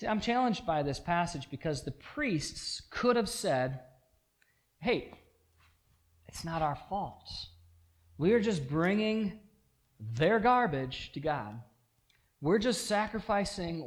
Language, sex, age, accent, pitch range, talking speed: English, male, 40-59, American, 115-160 Hz, 110 wpm